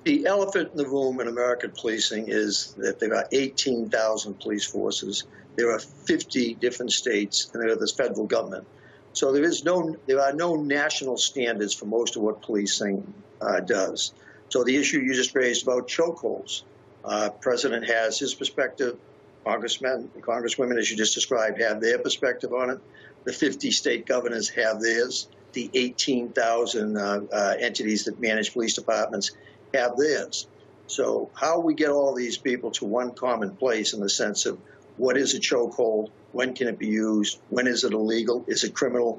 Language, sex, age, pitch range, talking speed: English, male, 60-79, 110-135 Hz, 175 wpm